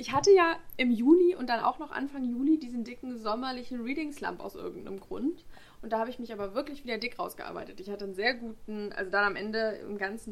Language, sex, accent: German, female, German